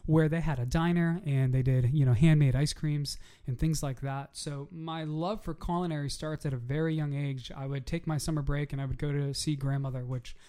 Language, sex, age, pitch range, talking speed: English, male, 20-39, 135-160 Hz, 240 wpm